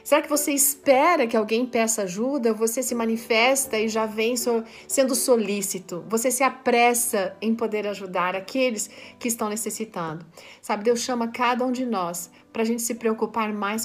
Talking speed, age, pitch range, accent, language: 180 wpm, 40-59, 200-250 Hz, Brazilian, Portuguese